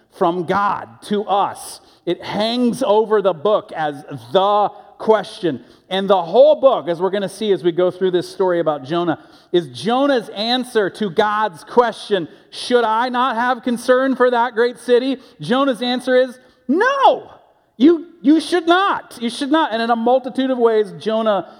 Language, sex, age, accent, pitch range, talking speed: English, male, 40-59, American, 155-235 Hz, 170 wpm